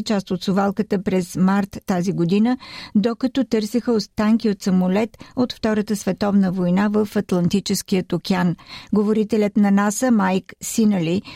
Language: Bulgarian